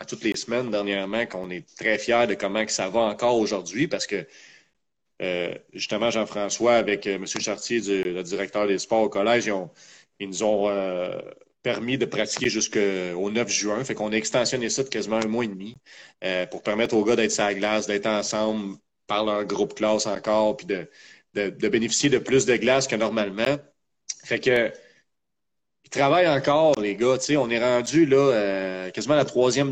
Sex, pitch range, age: male, 100-125 Hz, 30-49